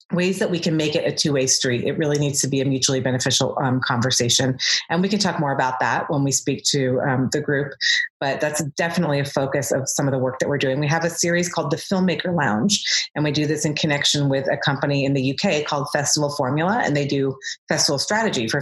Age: 30-49